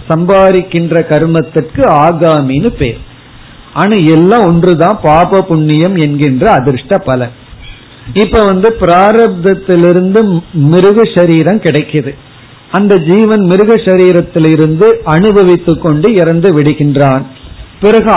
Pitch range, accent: 145-190 Hz, native